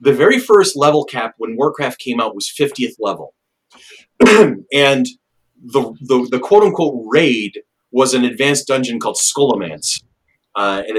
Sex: male